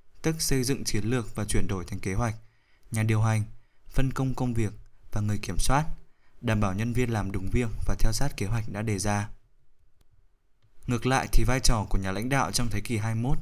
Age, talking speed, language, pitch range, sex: 20-39, 225 wpm, Vietnamese, 100-125 Hz, male